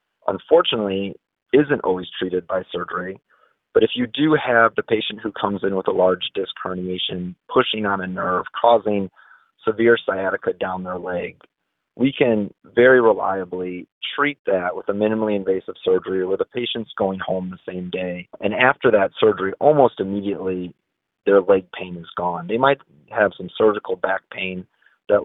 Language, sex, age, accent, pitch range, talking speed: English, male, 30-49, American, 90-140 Hz, 165 wpm